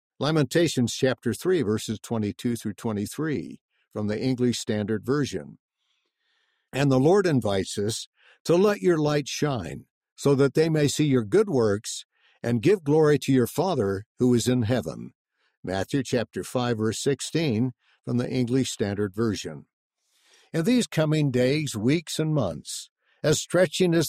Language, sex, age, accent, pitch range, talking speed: English, male, 60-79, American, 115-155 Hz, 150 wpm